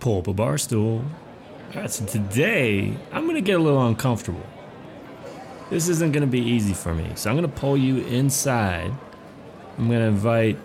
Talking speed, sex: 195 wpm, male